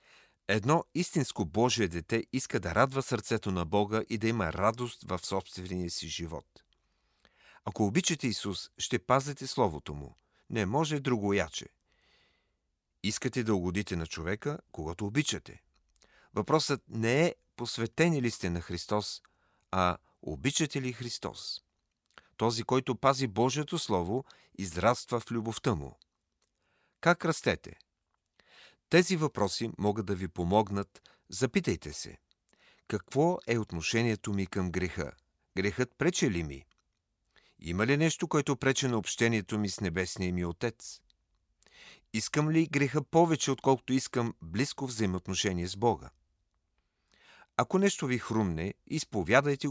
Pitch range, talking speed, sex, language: 90-135 Hz, 125 wpm, male, Bulgarian